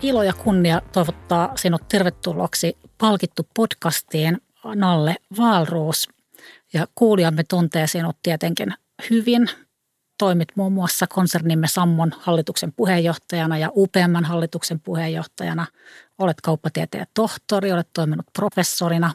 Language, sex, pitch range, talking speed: Finnish, female, 165-195 Hz, 95 wpm